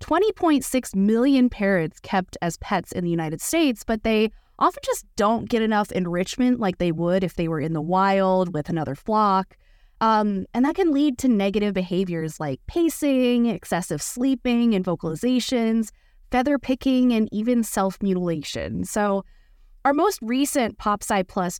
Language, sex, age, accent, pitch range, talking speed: English, female, 20-39, American, 170-235 Hz, 145 wpm